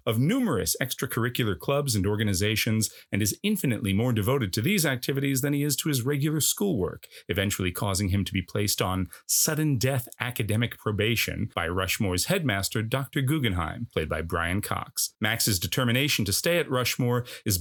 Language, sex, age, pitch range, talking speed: English, male, 40-59, 105-140 Hz, 160 wpm